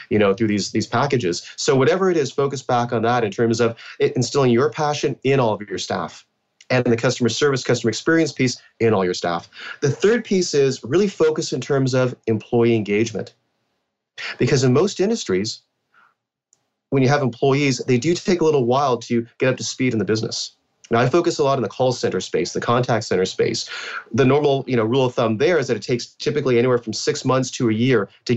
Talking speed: 220 wpm